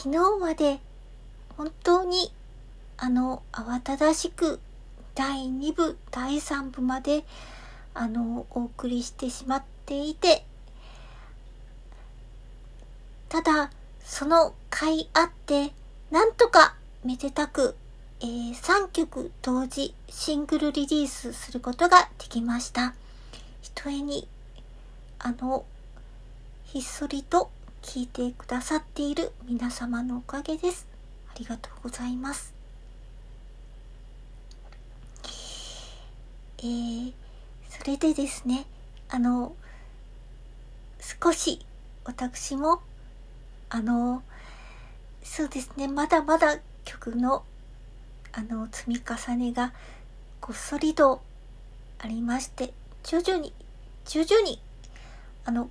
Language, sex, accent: Japanese, male, native